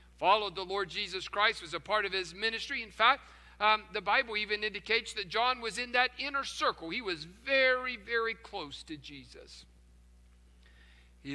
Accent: American